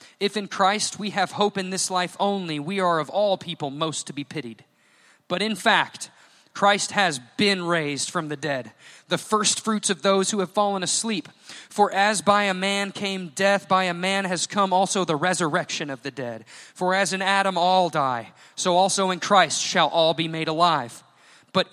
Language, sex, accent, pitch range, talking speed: English, male, American, 165-200 Hz, 195 wpm